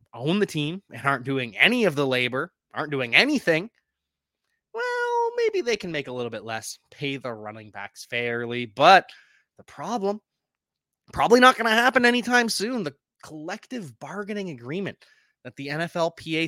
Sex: male